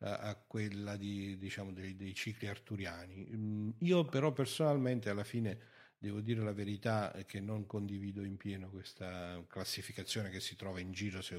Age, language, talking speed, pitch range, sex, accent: 50-69, Italian, 160 wpm, 95-120 Hz, male, native